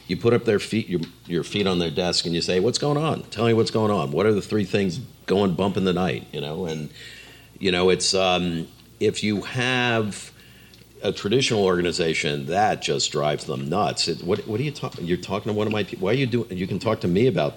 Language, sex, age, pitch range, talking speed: English, male, 50-69, 80-105 Hz, 250 wpm